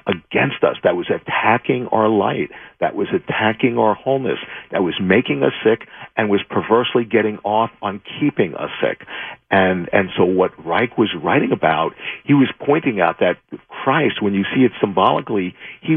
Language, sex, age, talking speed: English, male, 50-69, 175 wpm